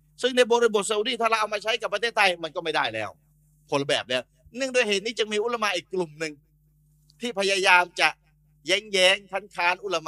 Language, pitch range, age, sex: Thai, 150-195 Hz, 30-49, male